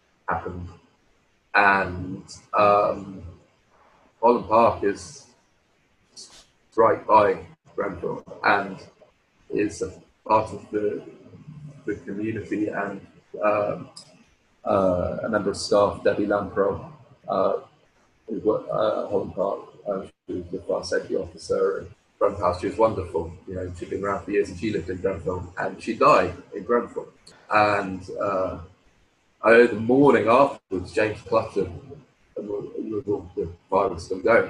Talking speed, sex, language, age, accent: 120 wpm, male, English, 30-49, British